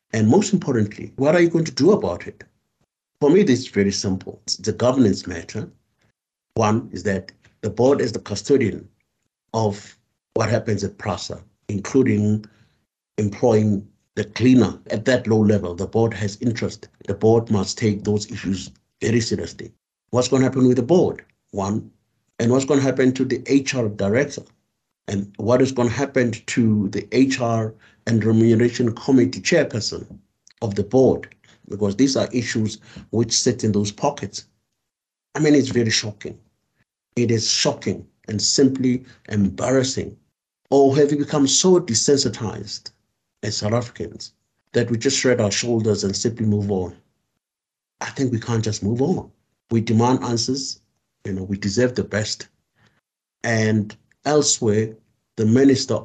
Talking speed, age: 155 wpm, 60-79